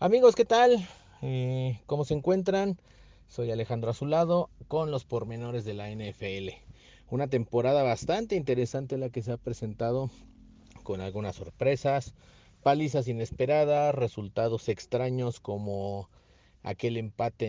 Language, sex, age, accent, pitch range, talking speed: Spanish, male, 40-59, Mexican, 110-140 Hz, 115 wpm